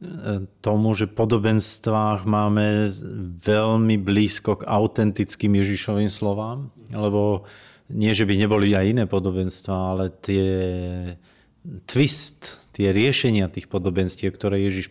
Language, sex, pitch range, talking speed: Slovak, male, 100-110 Hz, 110 wpm